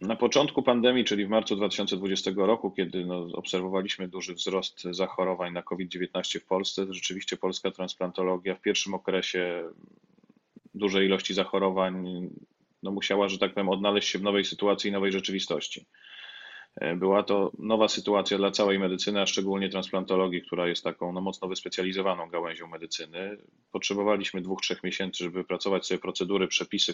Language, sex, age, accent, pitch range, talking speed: Polish, male, 30-49, native, 90-100 Hz, 145 wpm